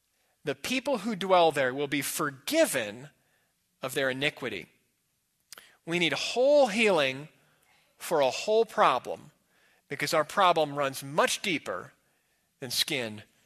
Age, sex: 40-59, male